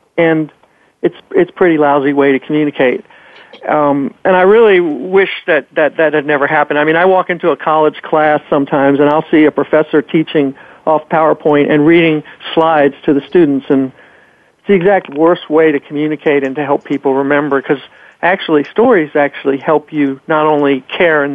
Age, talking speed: 50-69, 185 wpm